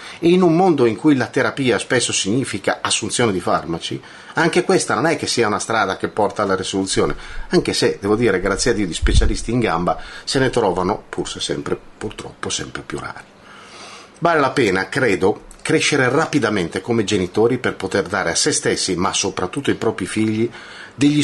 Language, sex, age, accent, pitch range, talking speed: Italian, male, 40-59, native, 110-155 Hz, 185 wpm